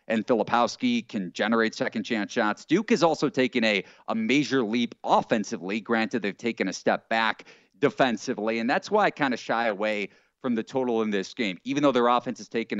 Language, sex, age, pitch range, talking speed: English, male, 40-59, 110-130 Hz, 200 wpm